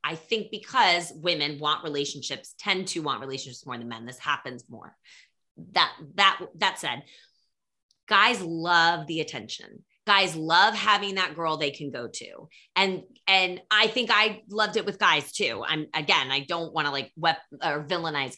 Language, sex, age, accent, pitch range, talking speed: English, female, 20-39, American, 155-215 Hz, 175 wpm